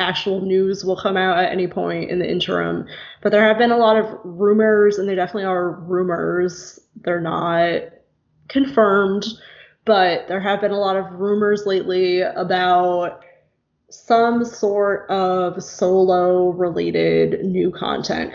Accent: American